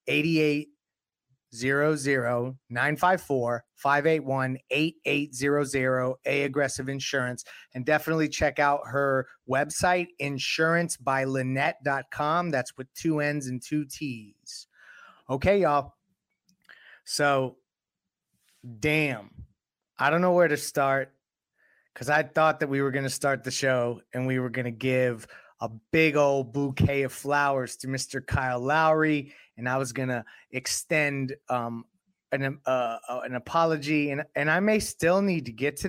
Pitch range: 125-155 Hz